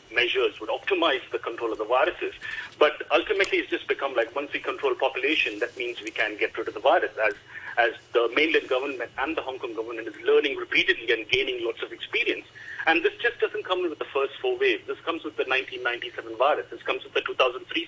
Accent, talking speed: Indian, 220 wpm